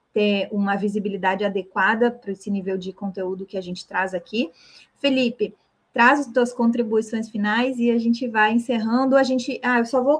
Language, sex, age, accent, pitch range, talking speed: Portuguese, female, 20-39, Brazilian, 210-245 Hz, 180 wpm